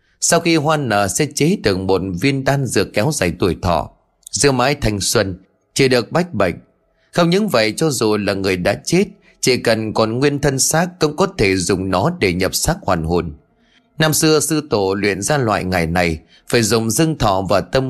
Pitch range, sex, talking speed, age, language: 95-155 Hz, male, 210 wpm, 20-39, Vietnamese